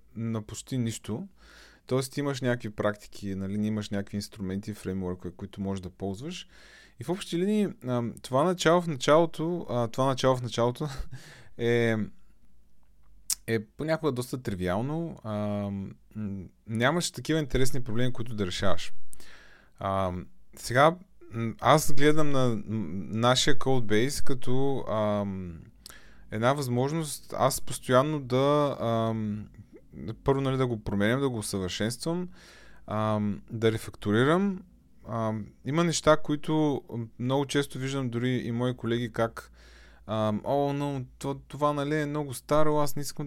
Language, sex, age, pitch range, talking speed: Bulgarian, male, 20-39, 105-145 Hz, 115 wpm